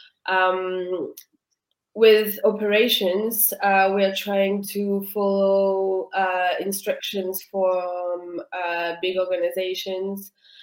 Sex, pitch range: female, 185-205 Hz